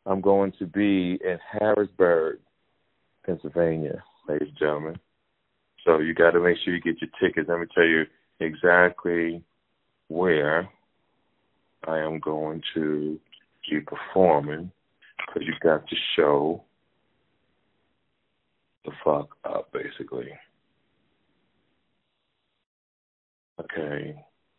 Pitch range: 80-95 Hz